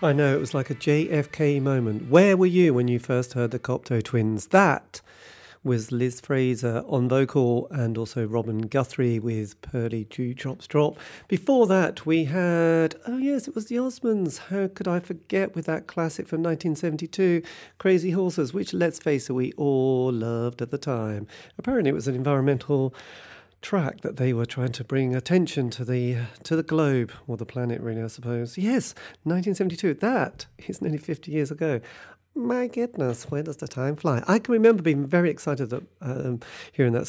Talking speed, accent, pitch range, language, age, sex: 180 wpm, British, 120-170 Hz, English, 40-59, male